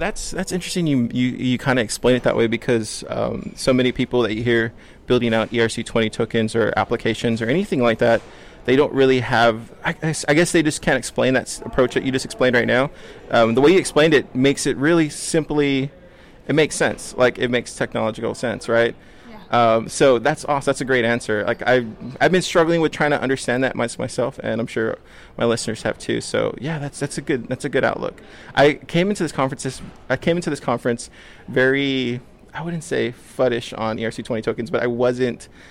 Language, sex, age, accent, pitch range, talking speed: English, male, 20-39, American, 115-140 Hz, 215 wpm